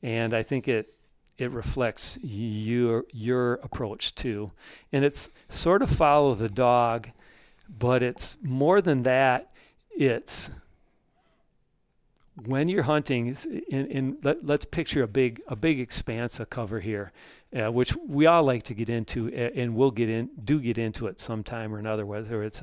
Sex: male